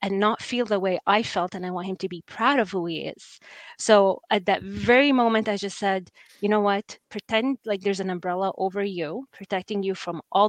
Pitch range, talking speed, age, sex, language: 190-220 Hz, 230 wpm, 20-39, female, English